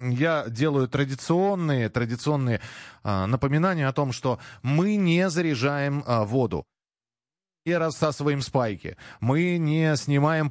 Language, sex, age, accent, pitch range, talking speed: Russian, male, 30-49, native, 120-160 Hz, 115 wpm